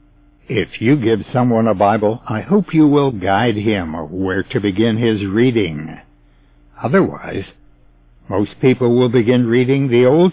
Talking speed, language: 145 wpm, English